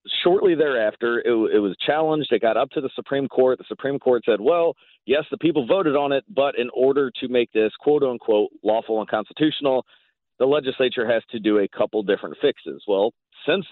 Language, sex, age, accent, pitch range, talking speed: English, male, 40-59, American, 115-155 Hz, 200 wpm